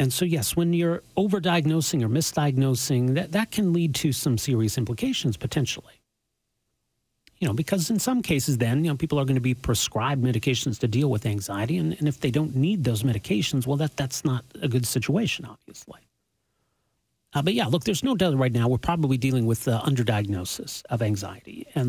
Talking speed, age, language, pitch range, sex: 195 wpm, 40-59, English, 115-150 Hz, male